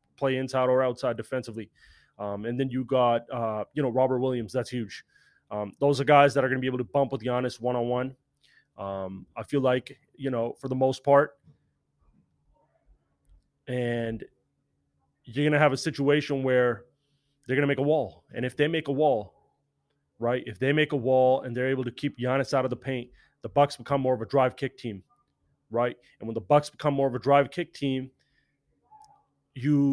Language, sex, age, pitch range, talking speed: English, male, 30-49, 120-140 Hz, 195 wpm